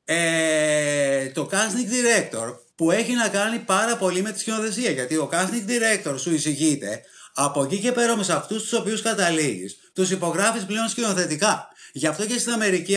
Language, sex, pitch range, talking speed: Greek, male, 140-205 Hz, 170 wpm